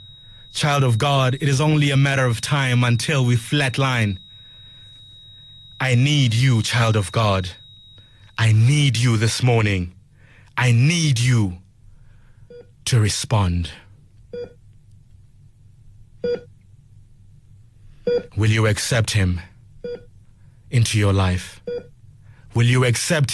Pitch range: 110-130 Hz